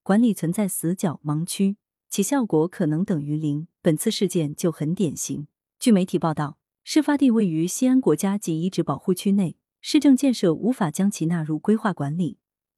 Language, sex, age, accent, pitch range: Chinese, female, 30-49, native, 160-225 Hz